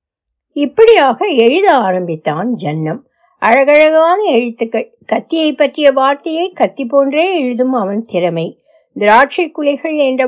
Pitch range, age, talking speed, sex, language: 185-280 Hz, 60-79, 100 wpm, female, Tamil